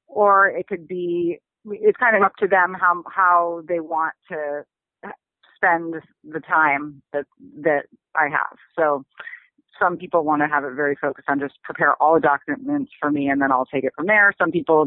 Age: 30-49